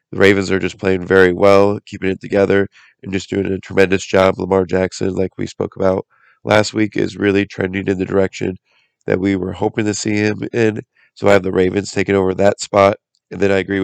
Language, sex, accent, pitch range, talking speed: English, male, American, 95-105 Hz, 220 wpm